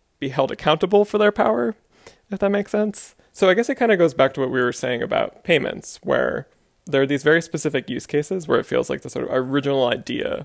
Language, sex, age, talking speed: English, male, 20-39, 240 wpm